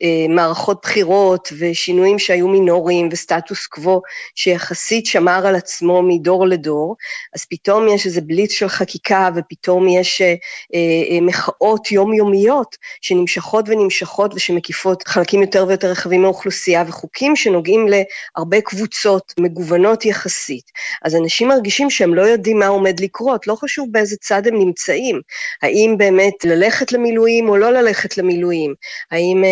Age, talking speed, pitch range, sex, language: 40-59, 130 wpm, 180-220 Hz, female, Hebrew